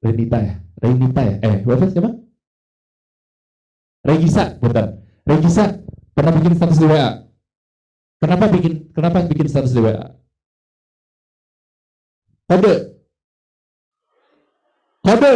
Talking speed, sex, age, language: 100 wpm, male, 50-69, English